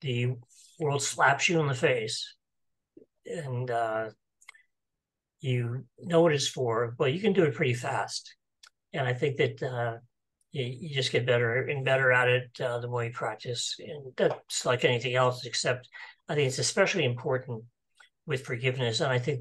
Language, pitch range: English, 120-150 Hz